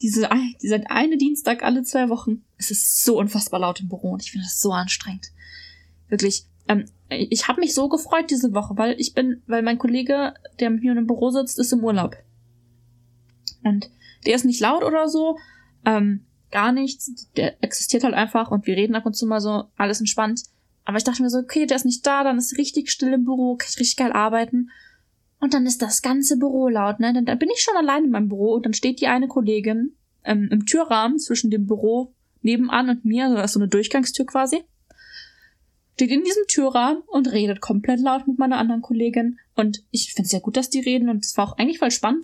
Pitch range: 215-270 Hz